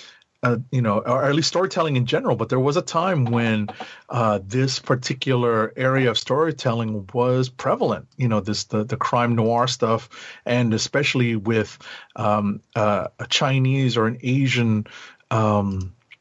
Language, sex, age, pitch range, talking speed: English, male, 40-59, 110-135 Hz, 155 wpm